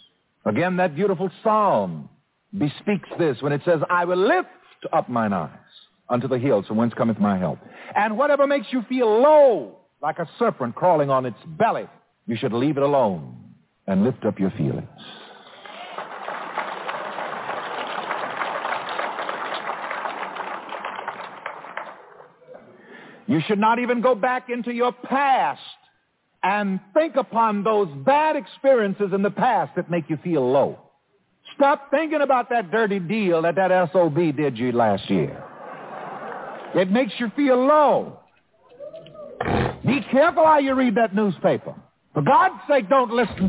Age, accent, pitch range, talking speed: 60-79, American, 155-265 Hz, 135 wpm